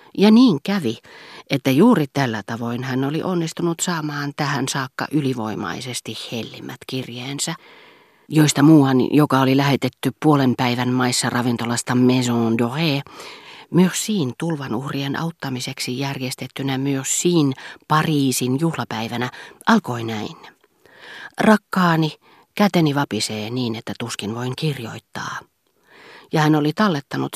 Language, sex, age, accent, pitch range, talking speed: Finnish, female, 40-59, native, 125-155 Hz, 110 wpm